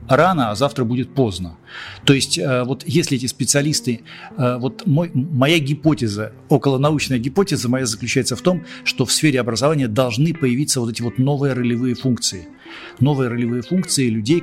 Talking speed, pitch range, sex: 150 wpm, 115-135 Hz, male